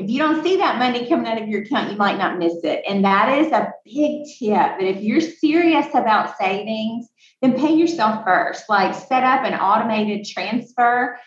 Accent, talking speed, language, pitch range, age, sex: American, 200 wpm, English, 180-240 Hz, 30-49, female